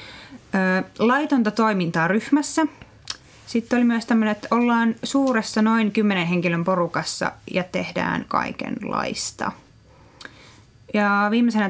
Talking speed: 95 wpm